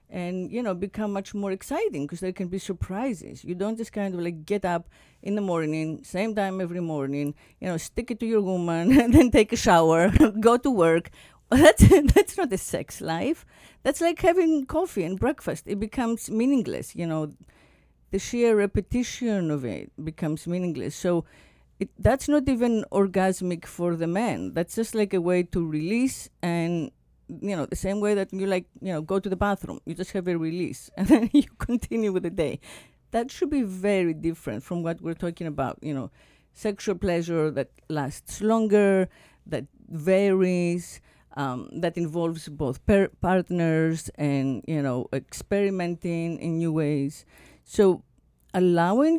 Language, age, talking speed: English, 50-69, 175 wpm